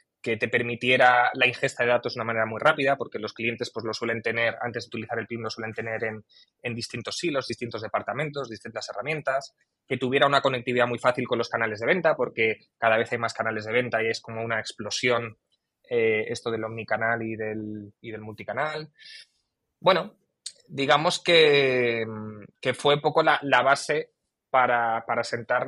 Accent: Spanish